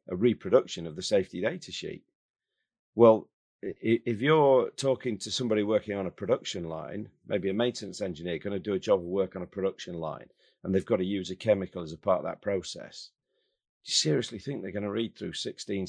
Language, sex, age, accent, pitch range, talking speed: English, male, 40-59, British, 90-120 Hz, 210 wpm